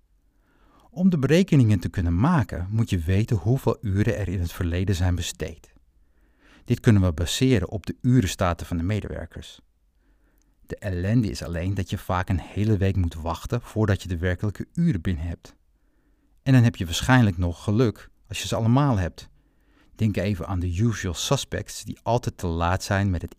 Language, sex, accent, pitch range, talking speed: Dutch, male, Dutch, 90-115 Hz, 180 wpm